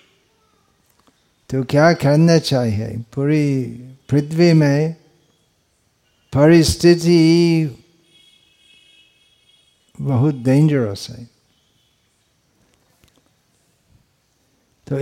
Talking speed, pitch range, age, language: 50 wpm, 130-175 Hz, 50-69, Hindi